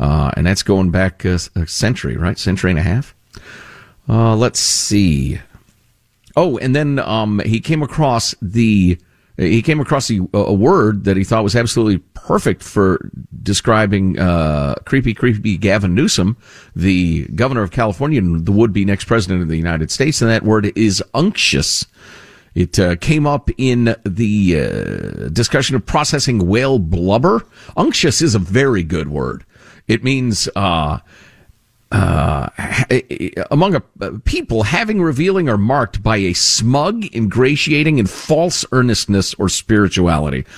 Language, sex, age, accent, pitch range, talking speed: English, male, 50-69, American, 95-140 Hz, 150 wpm